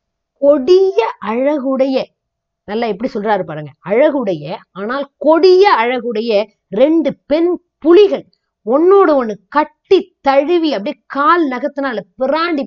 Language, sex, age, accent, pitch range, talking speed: Tamil, female, 20-39, native, 210-310 Hz, 100 wpm